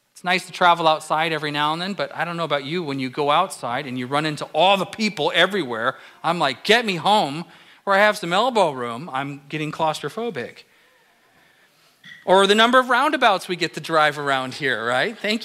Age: 40-59